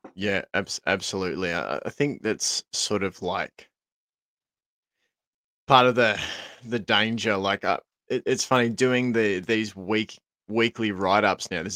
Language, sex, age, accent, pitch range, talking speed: English, male, 20-39, Australian, 100-125 Hz, 150 wpm